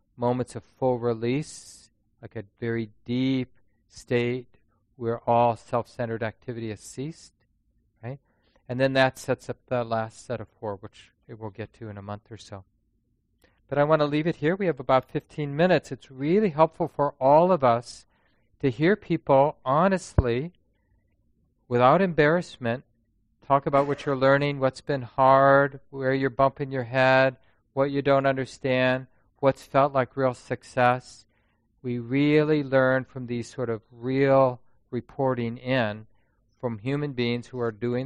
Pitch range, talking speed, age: 115-140 Hz, 155 wpm, 40-59